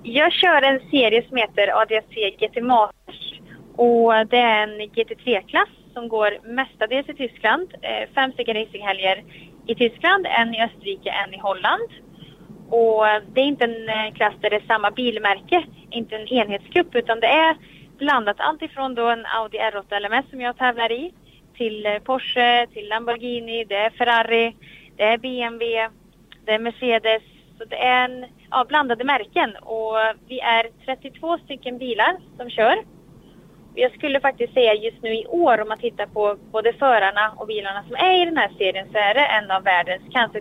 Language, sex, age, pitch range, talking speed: Swedish, female, 30-49, 210-260 Hz, 170 wpm